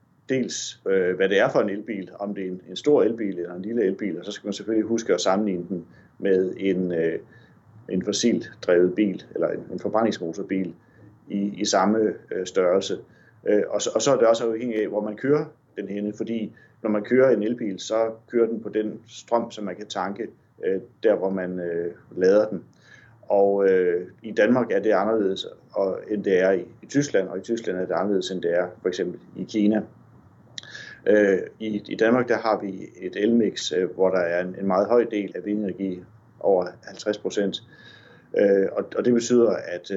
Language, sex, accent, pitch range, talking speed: Danish, male, native, 95-110 Hz, 180 wpm